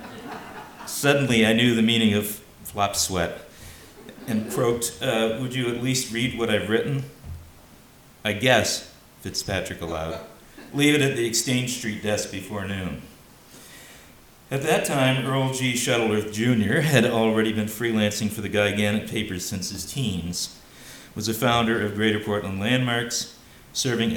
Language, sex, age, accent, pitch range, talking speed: English, male, 50-69, American, 95-120 Hz, 145 wpm